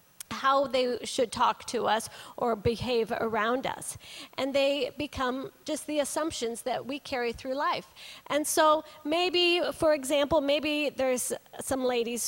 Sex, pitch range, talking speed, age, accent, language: female, 240-320 Hz, 145 wpm, 40-59, American, English